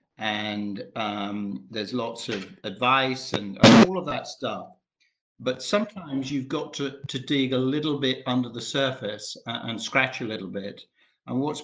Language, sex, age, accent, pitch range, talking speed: English, male, 50-69, British, 115-135 Hz, 165 wpm